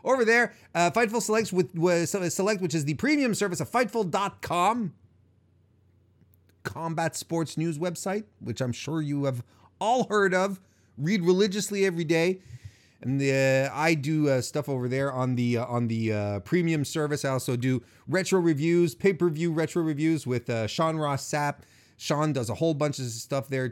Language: English